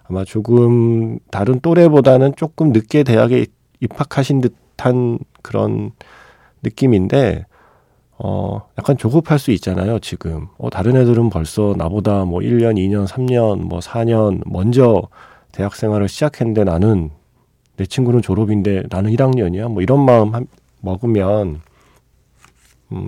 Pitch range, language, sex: 95-130 Hz, Korean, male